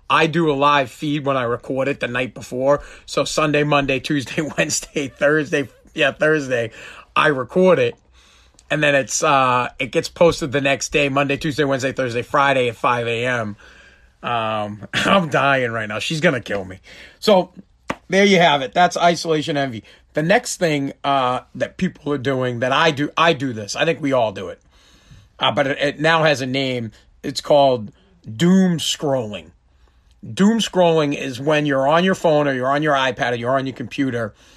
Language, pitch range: English, 125-155 Hz